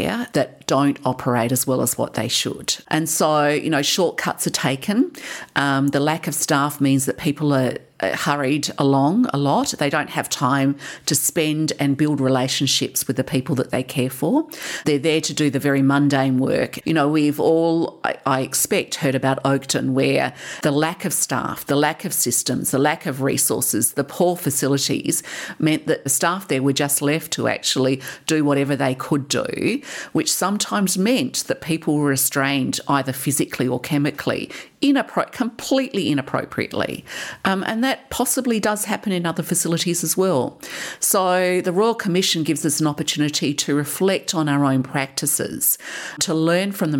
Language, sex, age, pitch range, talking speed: English, female, 50-69, 135-170 Hz, 175 wpm